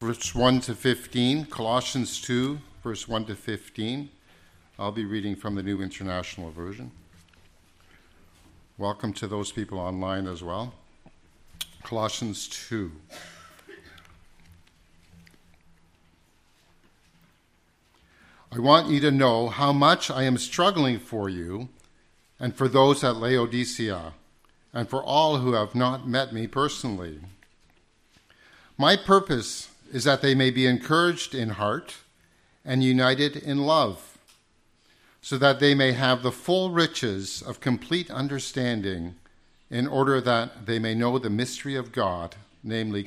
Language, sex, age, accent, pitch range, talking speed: English, male, 50-69, American, 90-135 Hz, 125 wpm